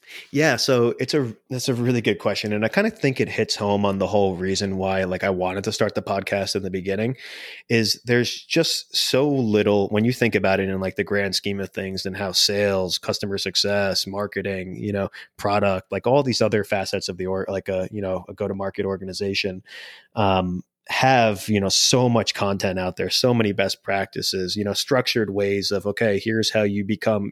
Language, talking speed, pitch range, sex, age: English, 215 wpm, 100-115 Hz, male, 20-39